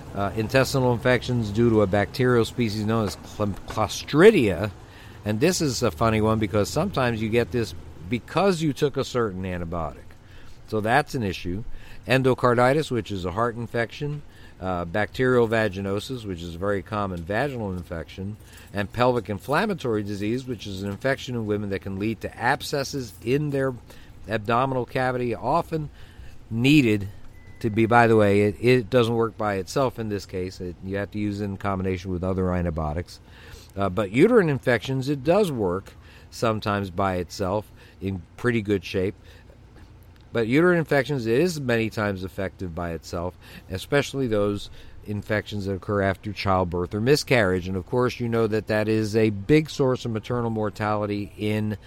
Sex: male